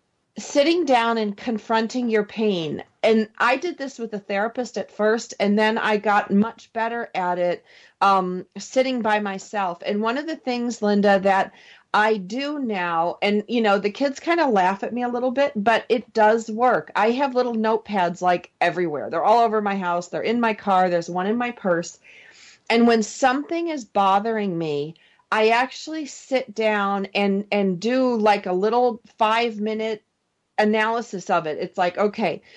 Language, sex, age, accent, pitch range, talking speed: English, female, 40-59, American, 200-245 Hz, 180 wpm